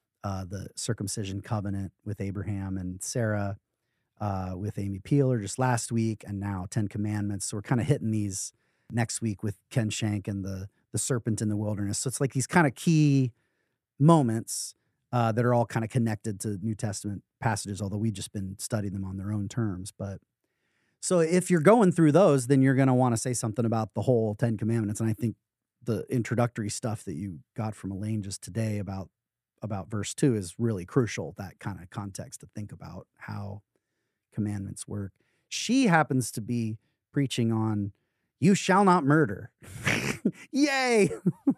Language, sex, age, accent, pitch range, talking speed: English, male, 30-49, American, 105-130 Hz, 185 wpm